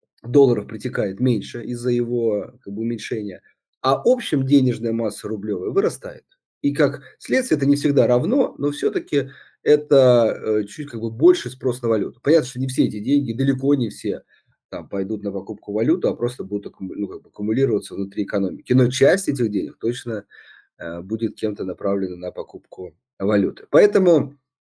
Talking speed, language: 145 wpm, Russian